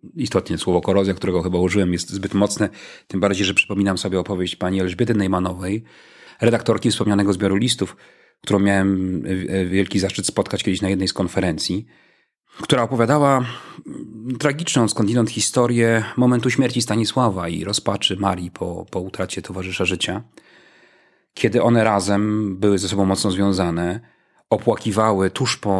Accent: native